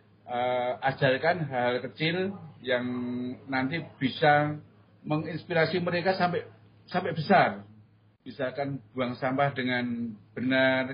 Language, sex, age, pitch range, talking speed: Indonesian, male, 50-69, 115-145 Hz, 95 wpm